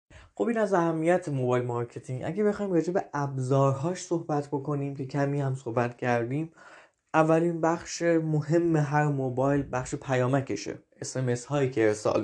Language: Persian